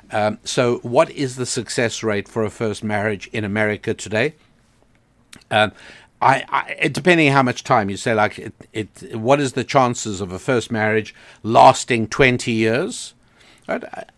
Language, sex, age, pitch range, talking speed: English, male, 60-79, 110-140 Hz, 140 wpm